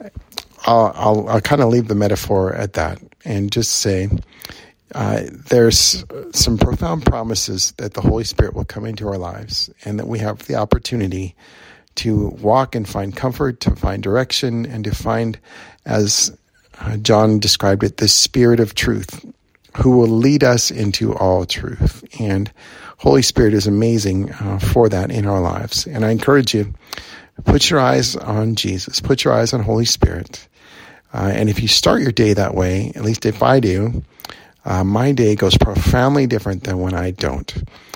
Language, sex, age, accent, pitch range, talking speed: English, male, 50-69, American, 100-115 Hz, 170 wpm